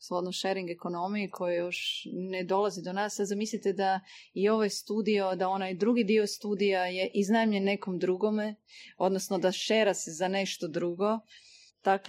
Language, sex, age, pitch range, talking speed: Croatian, female, 30-49, 175-205 Hz, 160 wpm